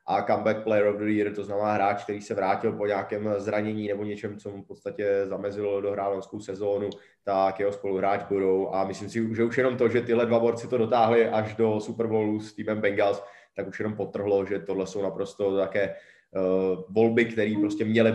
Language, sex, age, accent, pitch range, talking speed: Czech, male, 20-39, native, 95-120 Hz, 205 wpm